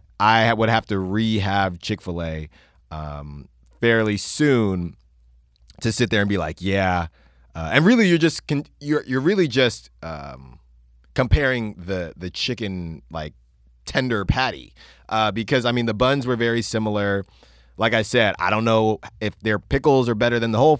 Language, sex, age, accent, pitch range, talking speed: English, male, 30-49, American, 95-135 Hz, 165 wpm